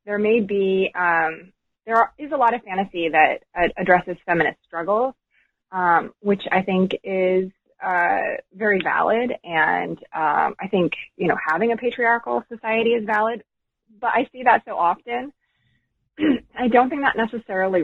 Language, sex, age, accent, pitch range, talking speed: English, female, 20-39, American, 165-215 Hz, 160 wpm